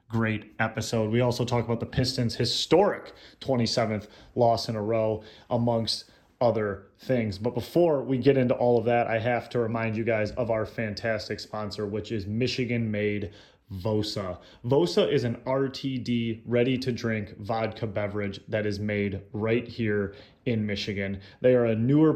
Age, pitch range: 30-49, 110-130 Hz